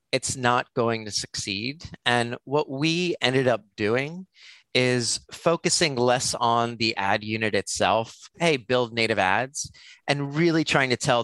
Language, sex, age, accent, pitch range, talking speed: English, male, 30-49, American, 105-135 Hz, 150 wpm